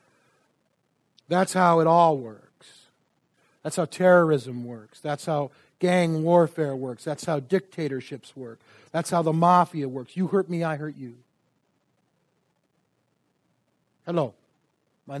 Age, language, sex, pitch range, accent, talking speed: 50-69, English, male, 135-190 Hz, American, 120 wpm